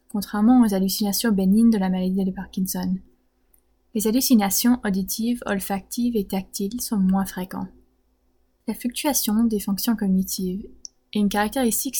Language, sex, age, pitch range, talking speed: French, female, 20-39, 195-225 Hz, 130 wpm